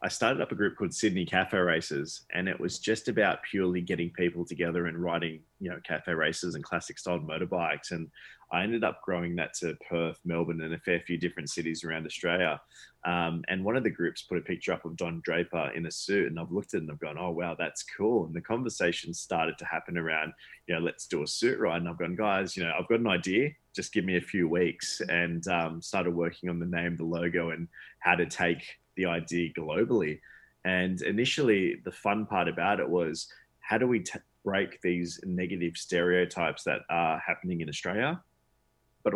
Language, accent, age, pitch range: English, Australian, 20-39, 85-90 Hz